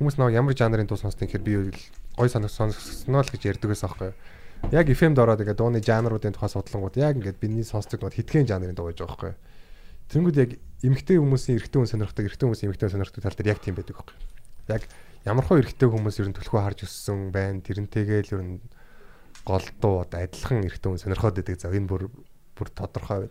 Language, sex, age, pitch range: Korean, male, 20-39, 95-120 Hz